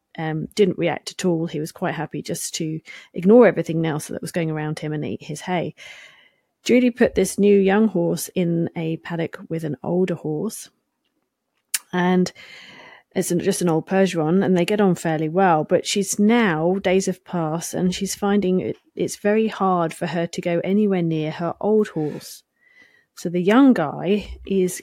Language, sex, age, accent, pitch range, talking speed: English, female, 30-49, British, 170-205 Hz, 180 wpm